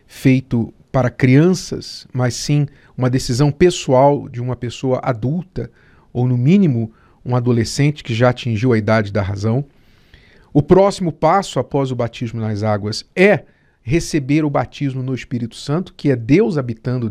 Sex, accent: male, Brazilian